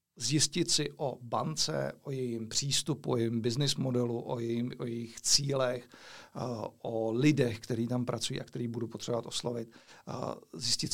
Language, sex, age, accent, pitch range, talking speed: Czech, male, 40-59, native, 120-135 Hz, 150 wpm